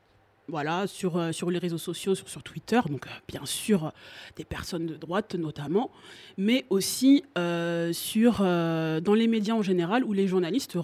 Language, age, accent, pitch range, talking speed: French, 30-49, French, 170-225 Hz, 185 wpm